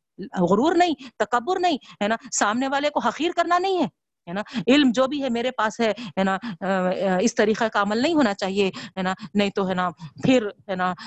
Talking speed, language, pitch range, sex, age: 190 wpm, Urdu, 190-245 Hz, female, 50-69